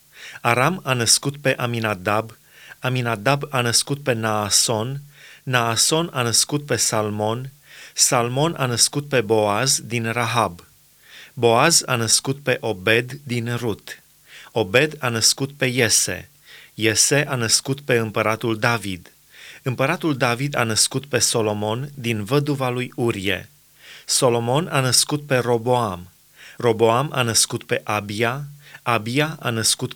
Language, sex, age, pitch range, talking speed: Romanian, male, 30-49, 115-140 Hz, 125 wpm